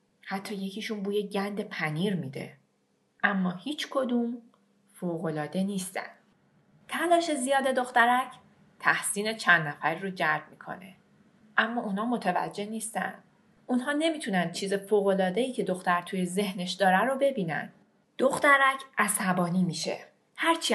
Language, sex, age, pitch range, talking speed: Persian, female, 30-49, 180-245 Hz, 115 wpm